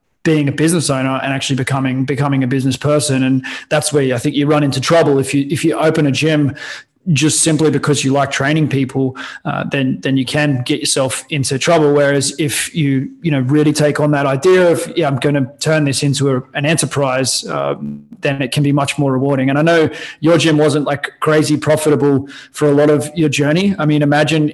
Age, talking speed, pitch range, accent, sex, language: 20-39, 220 wpm, 140-155 Hz, Australian, male, English